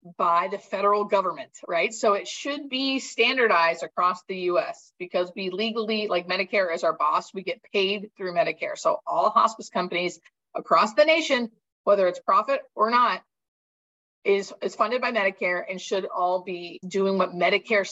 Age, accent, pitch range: 30-49, American, 175-225 Hz